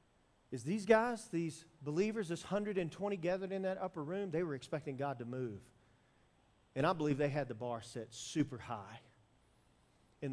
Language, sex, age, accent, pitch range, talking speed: English, male, 40-59, American, 140-210 Hz, 170 wpm